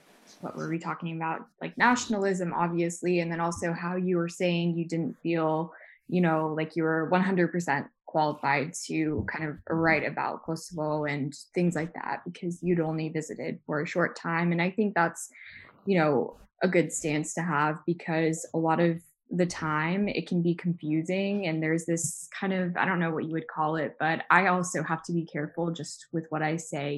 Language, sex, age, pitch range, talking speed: English, female, 20-39, 155-175 Hz, 200 wpm